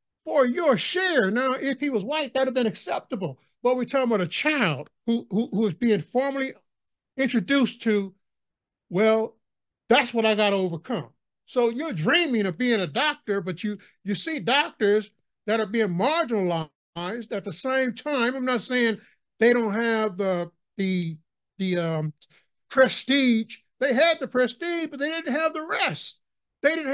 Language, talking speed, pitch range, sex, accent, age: English, 165 wpm, 210-290 Hz, male, American, 60-79